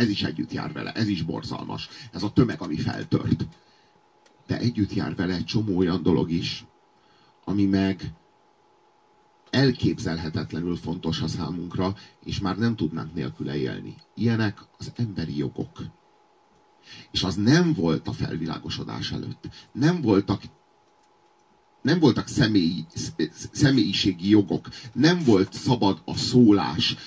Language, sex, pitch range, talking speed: Hungarian, male, 105-140 Hz, 125 wpm